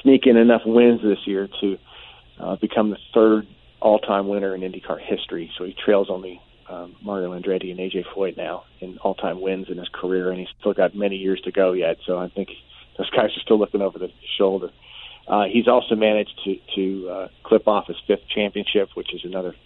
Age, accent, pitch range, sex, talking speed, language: 40-59, American, 95-110 Hz, male, 210 wpm, English